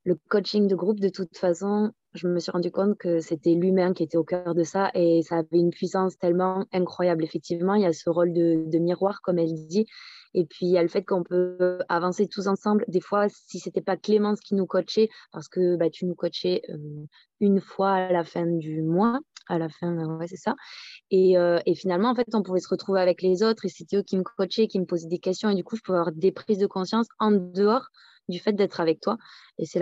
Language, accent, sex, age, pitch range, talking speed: French, French, female, 20-39, 170-195 Hz, 250 wpm